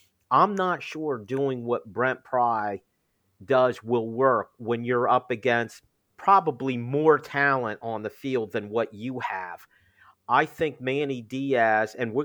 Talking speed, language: 145 wpm, English